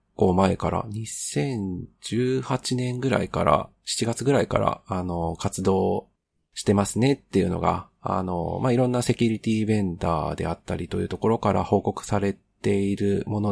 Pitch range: 90-120 Hz